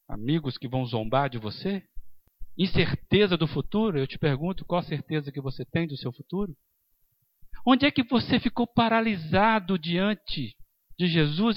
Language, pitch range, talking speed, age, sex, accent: English, 135-215 Hz, 155 wpm, 60-79, male, Brazilian